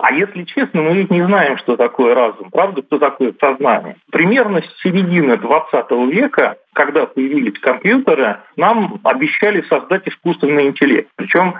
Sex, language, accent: male, Russian, native